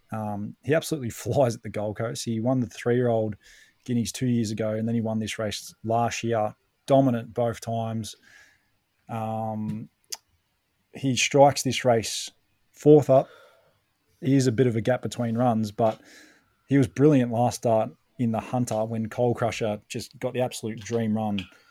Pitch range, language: 110-125 Hz, English